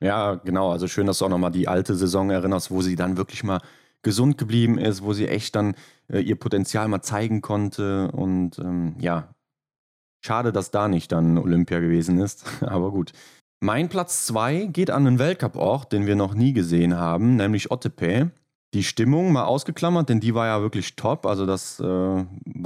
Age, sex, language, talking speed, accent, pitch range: 30-49, male, German, 190 wpm, German, 95-130 Hz